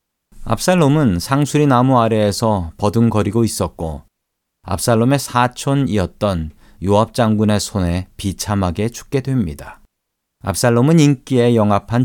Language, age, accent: Korean, 40-59, native